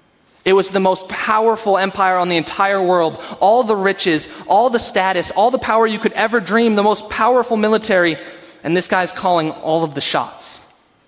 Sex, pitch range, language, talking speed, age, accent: male, 165-220 Hz, English, 190 wpm, 20-39, American